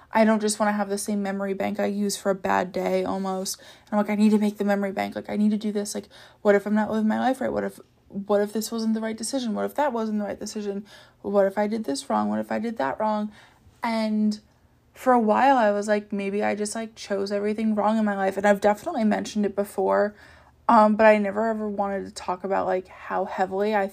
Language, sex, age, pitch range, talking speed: English, female, 20-39, 190-215 Hz, 265 wpm